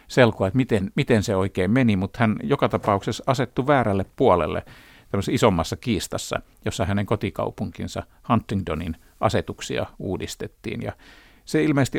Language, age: Finnish, 50-69